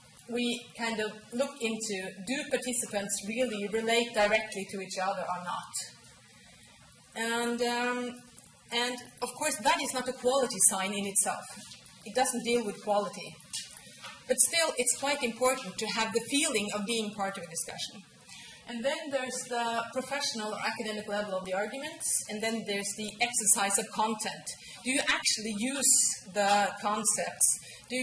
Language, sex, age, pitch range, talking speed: English, female, 30-49, 200-245 Hz, 155 wpm